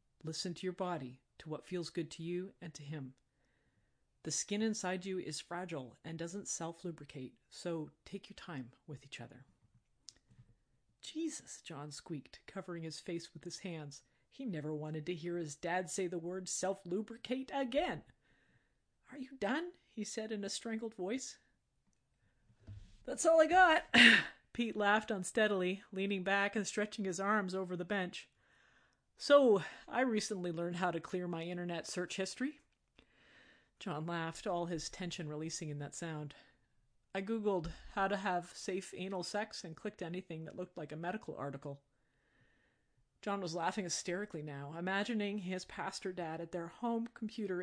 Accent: American